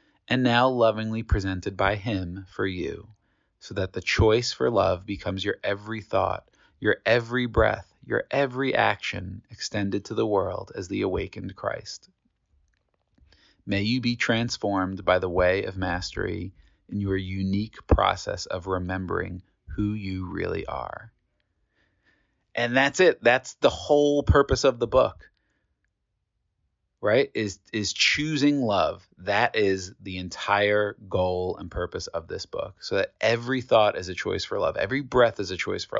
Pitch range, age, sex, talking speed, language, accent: 95-125 Hz, 30-49, male, 150 wpm, English, American